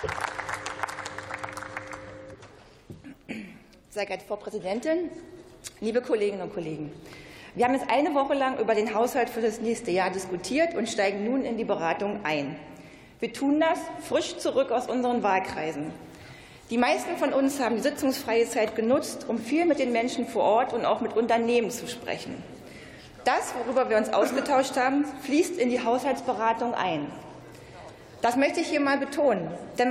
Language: German